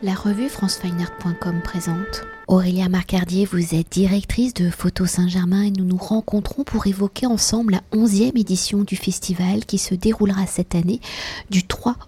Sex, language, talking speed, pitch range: female, French, 155 wpm, 170-205 Hz